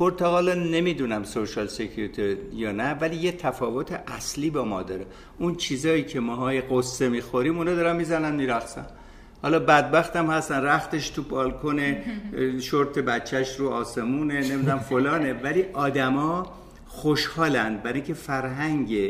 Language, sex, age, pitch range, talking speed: Persian, male, 60-79, 115-155 Hz, 135 wpm